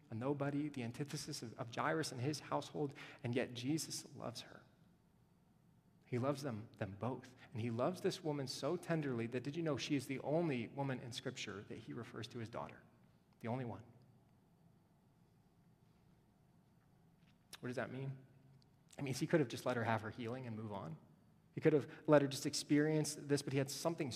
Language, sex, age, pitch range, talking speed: English, male, 30-49, 130-170 Hz, 190 wpm